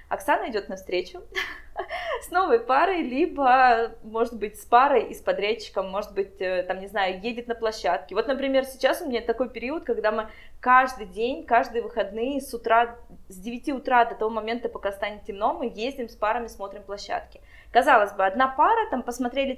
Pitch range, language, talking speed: 210-260 Hz, Russian, 180 wpm